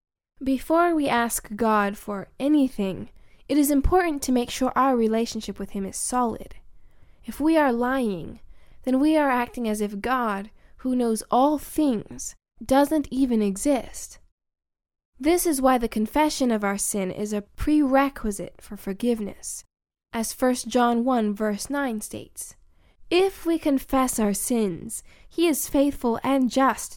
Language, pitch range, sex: English, 220-280 Hz, female